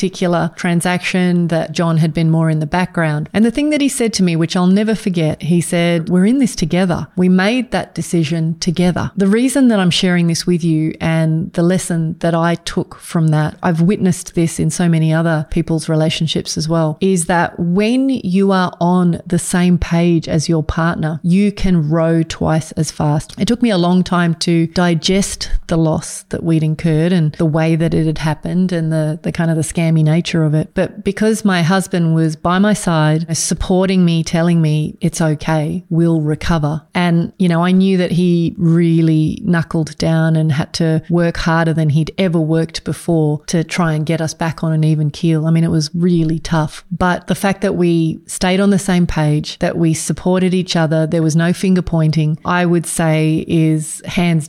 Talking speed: 205 wpm